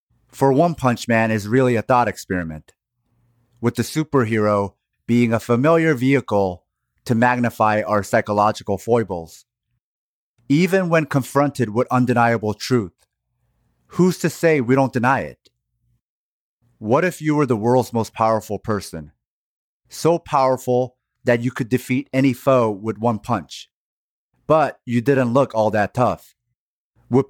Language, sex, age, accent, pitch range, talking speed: English, male, 30-49, American, 110-130 Hz, 135 wpm